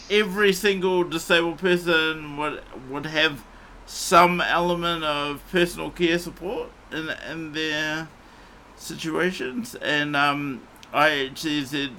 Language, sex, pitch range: English, male, 135-170 Hz